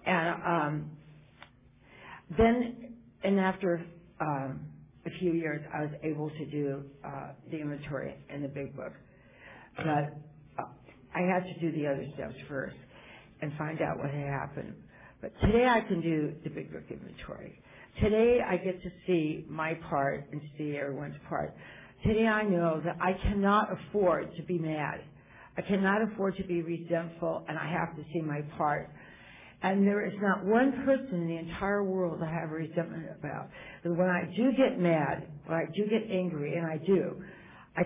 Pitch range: 150-185 Hz